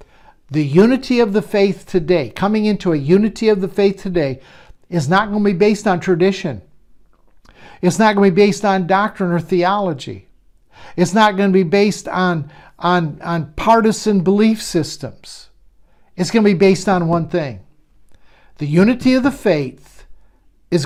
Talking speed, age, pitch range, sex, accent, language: 165 wpm, 60-79, 170-210 Hz, male, American, English